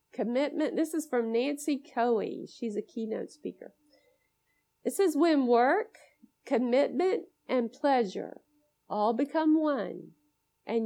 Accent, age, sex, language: American, 50-69, female, English